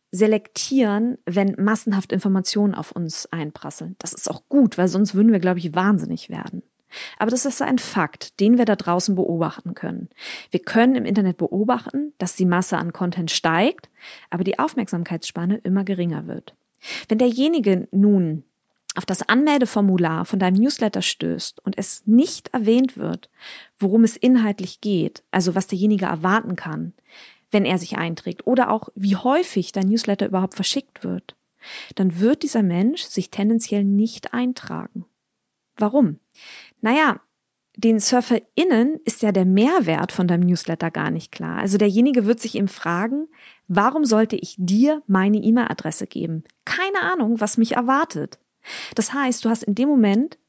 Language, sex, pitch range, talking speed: German, female, 185-240 Hz, 155 wpm